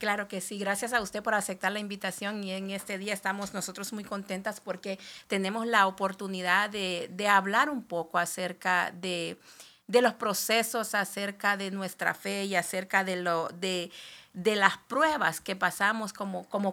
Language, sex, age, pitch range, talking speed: Spanish, female, 50-69, 190-220 Hz, 170 wpm